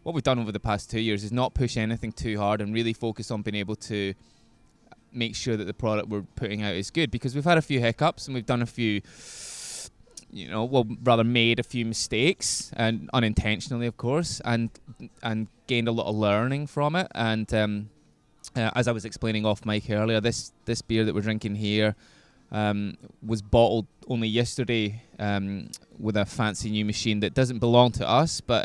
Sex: male